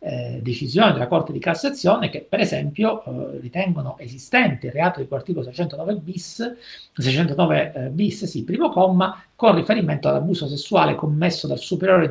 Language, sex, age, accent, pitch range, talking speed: Italian, male, 50-69, native, 140-195 Hz, 140 wpm